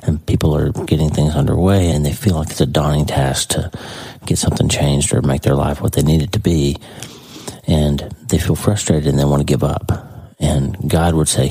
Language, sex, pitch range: English, male, 75-95 Hz